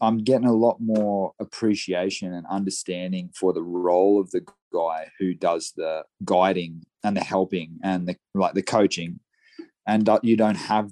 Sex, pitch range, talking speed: male, 90-100 Hz, 165 wpm